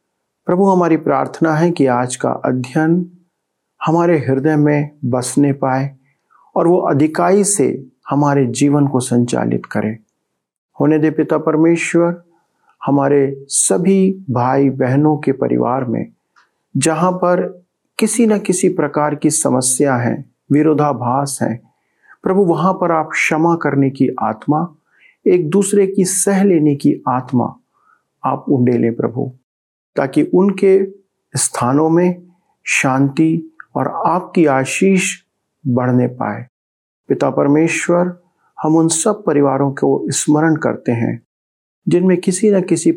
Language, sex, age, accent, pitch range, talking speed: Hindi, male, 40-59, native, 130-175 Hz, 120 wpm